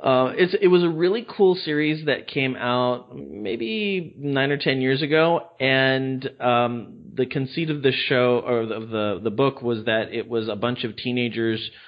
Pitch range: 95-120 Hz